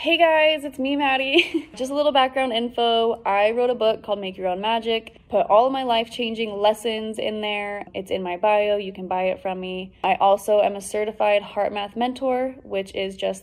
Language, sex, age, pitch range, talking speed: English, female, 20-39, 195-240 Hz, 210 wpm